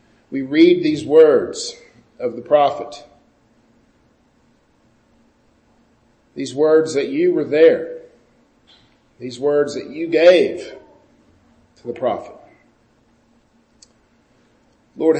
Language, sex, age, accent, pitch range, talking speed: English, male, 50-69, American, 130-175 Hz, 85 wpm